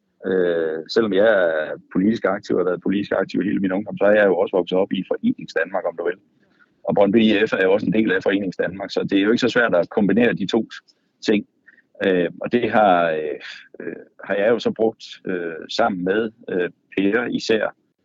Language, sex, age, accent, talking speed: Danish, male, 60-79, native, 215 wpm